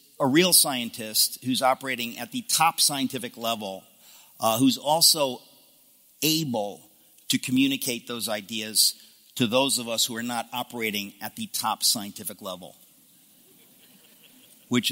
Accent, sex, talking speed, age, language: American, male, 130 wpm, 50-69, English